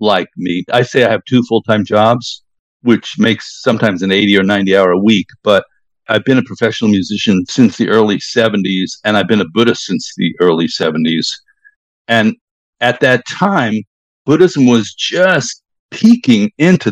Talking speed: 165 wpm